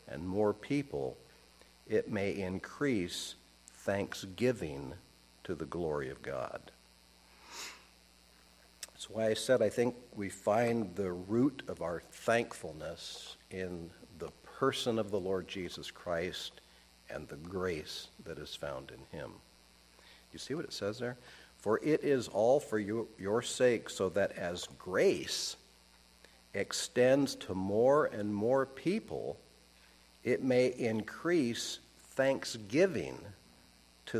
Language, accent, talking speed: English, American, 120 wpm